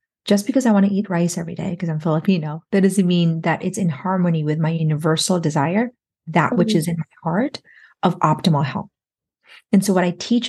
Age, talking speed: 30-49, 210 wpm